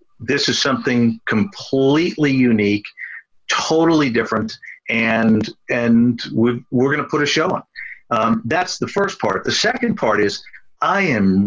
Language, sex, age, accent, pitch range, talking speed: English, male, 50-69, American, 115-145 Hz, 140 wpm